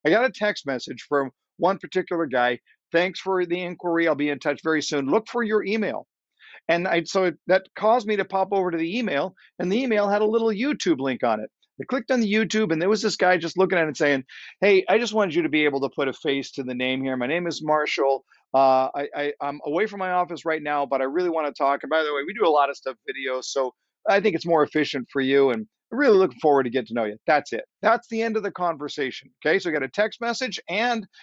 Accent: American